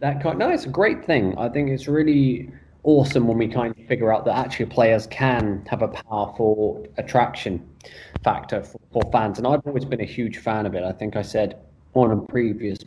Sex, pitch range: male, 100-125 Hz